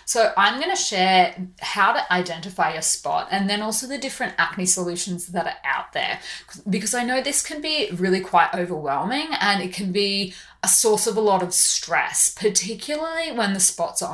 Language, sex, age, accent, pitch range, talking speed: English, female, 20-39, Australian, 180-225 Hz, 195 wpm